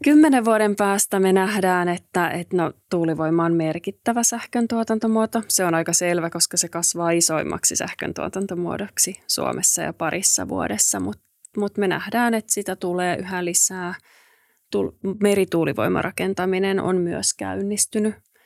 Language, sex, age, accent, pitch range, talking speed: Finnish, female, 30-49, native, 175-220 Hz, 125 wpm